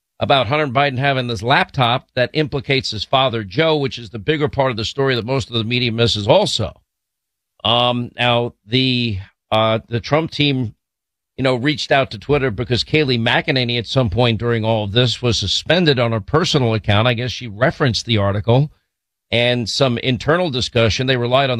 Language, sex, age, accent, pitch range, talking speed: English, male, 50-69, American, 115-140 Hz, 190 wpm